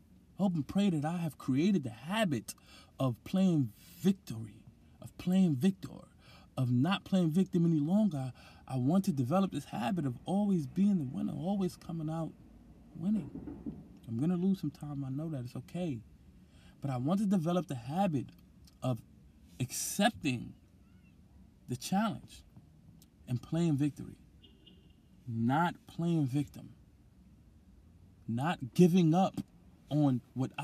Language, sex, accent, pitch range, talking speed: English, male, American, 110-175 Hz, 135 wpm